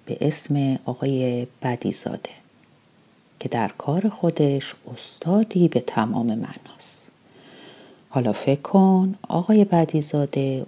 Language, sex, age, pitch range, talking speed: Persian, female, 40-59, 130-170 Hz, 95 wpm